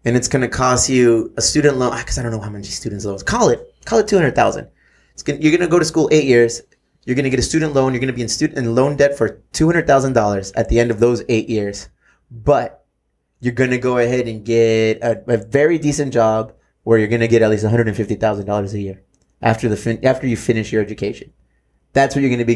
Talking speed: 245 wpm